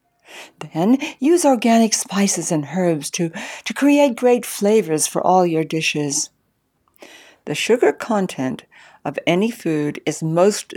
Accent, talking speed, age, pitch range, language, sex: American, 130 wpm, 60-79, 150-225 Hz, English, female